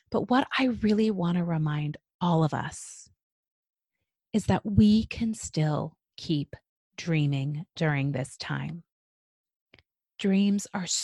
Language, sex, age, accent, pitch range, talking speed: English, female, 30-49, American, 165-250 Hz, 120 wpm